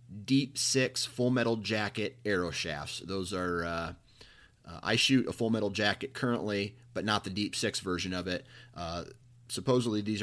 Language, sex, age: English, male, 30-49